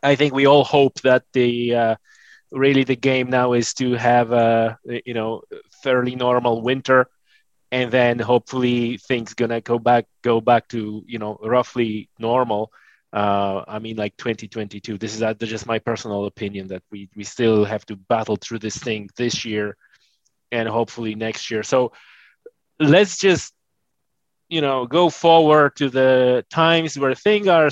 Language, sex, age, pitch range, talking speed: English, male, 20-39, 115-140 Hz, 160 wpm